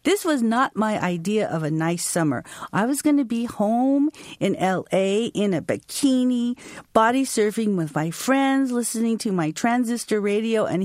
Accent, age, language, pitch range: American, 40-59, English, 195-275 Hz